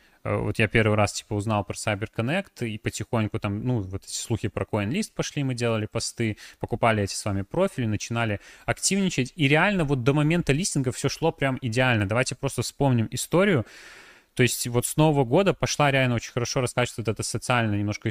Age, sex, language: 20-39, male, Russian